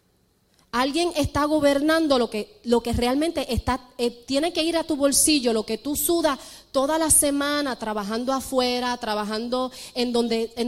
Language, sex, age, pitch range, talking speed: English, female, 30-49, 230-310 Hz, 145 wpm